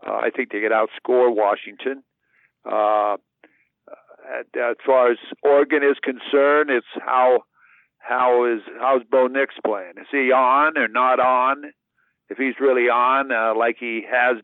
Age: 50-69